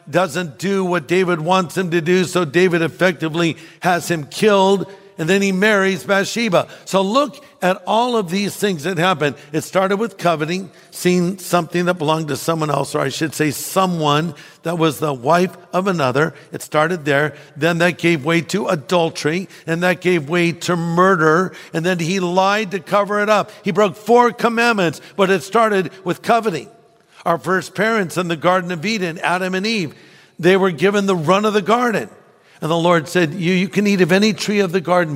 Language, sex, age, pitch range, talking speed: English, male, 60-79, 160-195 Hz, 195 wpm